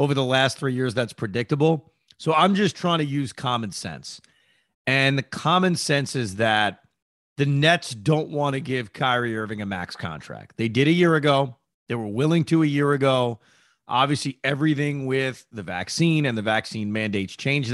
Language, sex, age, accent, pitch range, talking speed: English, male, 30-49, American, 120-155 Hz, 185 wpm